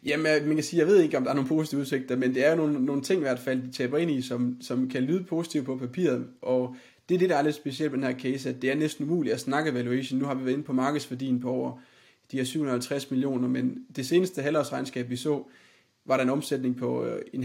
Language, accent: Danish, native